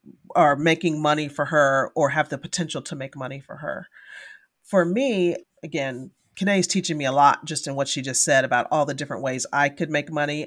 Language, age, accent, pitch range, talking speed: English, 40-59, American, 140-170 Hz, 210 wpm